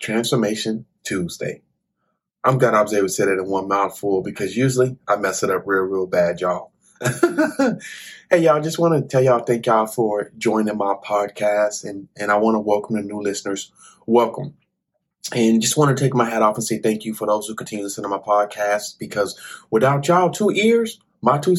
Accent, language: American, English